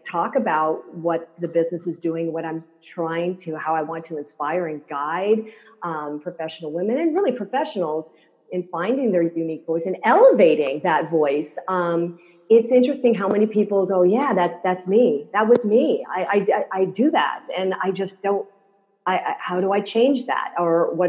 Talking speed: 185 wpm